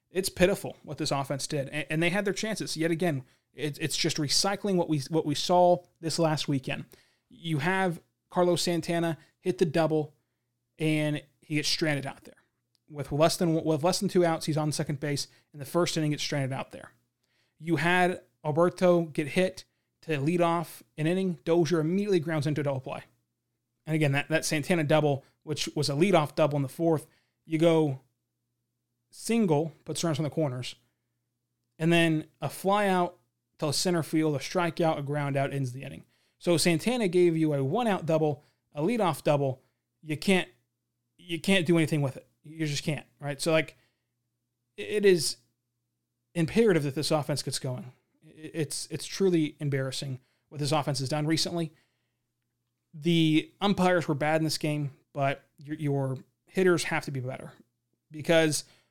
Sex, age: male, 20-39